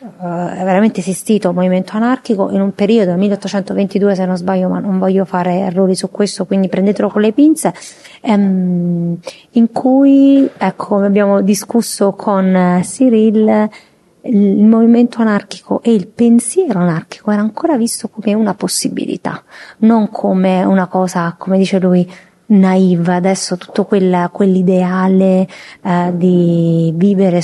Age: 30-49